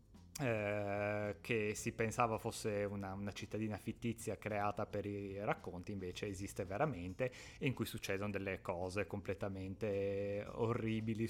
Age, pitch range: 20-39, 105-120 Hz